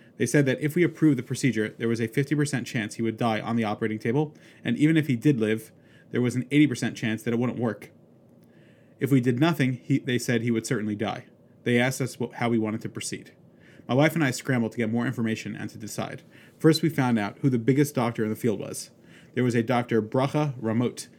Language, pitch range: English, 115-140 Hz